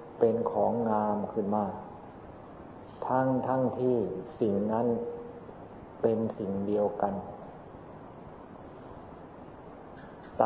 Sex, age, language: male, 40-59, Thai